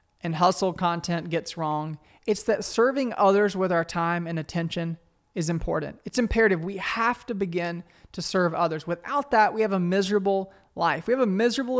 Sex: male